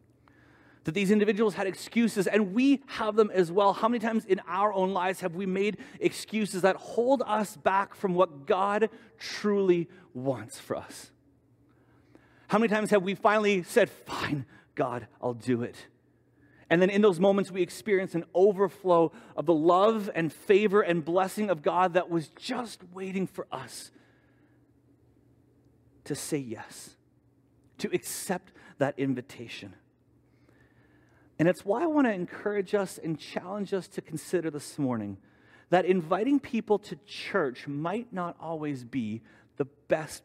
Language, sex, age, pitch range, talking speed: English, male, 30-49, 140-200 Hz, 150 wpm